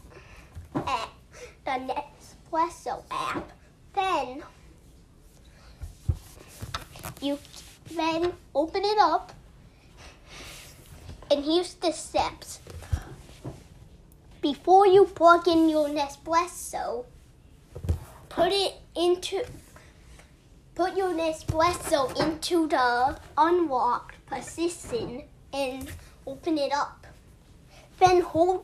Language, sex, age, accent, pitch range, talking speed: English, female, 10-29, American, 280-350 Hz, 75 wpm